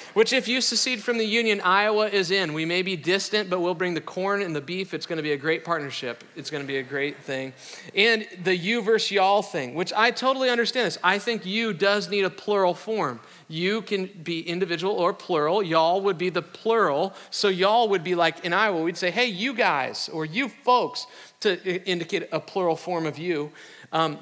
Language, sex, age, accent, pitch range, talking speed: English, male, 40-59, American, 165-215 Hz, 215 wpm